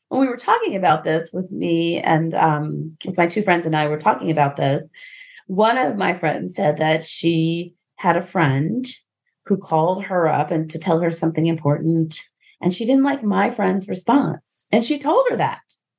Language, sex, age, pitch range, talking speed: English, female, 30-49, 165-250 Hz, 195 wpm